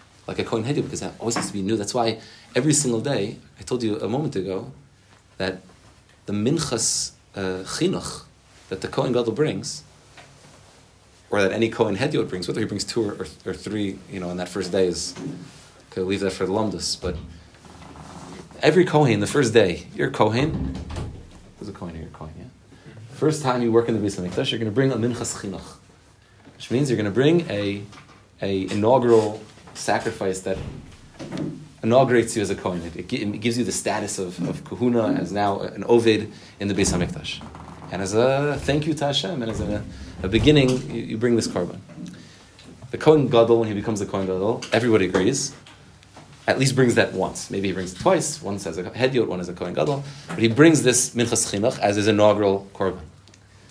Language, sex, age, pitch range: English, male, 30-49, 95-125 Hz